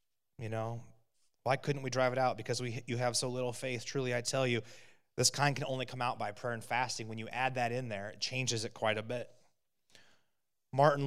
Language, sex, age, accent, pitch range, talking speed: English, male, 30-49, American, 115-140 Hz, 230 wpm